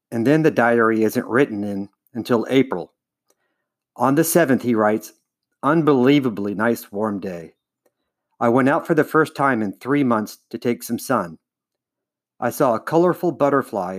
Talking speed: 160 wpm